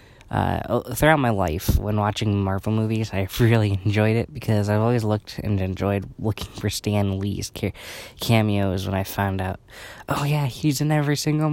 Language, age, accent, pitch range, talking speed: English, 20-39, American, 100-115 Hz, 175 wpm